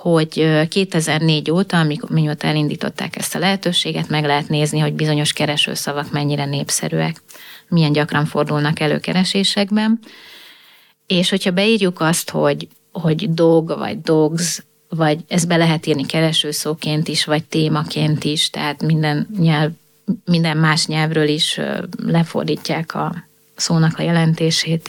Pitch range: 155-185 Hz